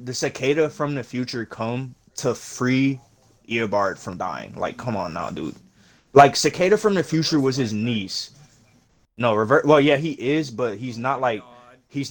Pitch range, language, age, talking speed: 110-135 Hz, English, 20-39, 175 wpm